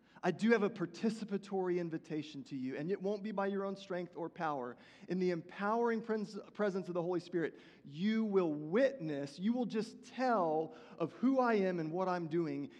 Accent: American